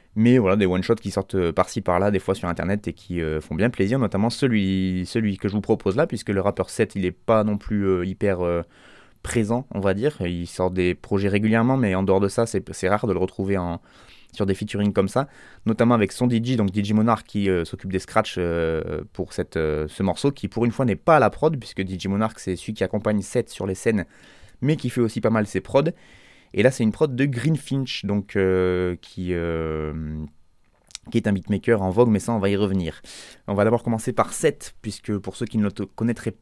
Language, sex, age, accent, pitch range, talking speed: French, male, 20-39, French, 95-120 Hz, 240 wpm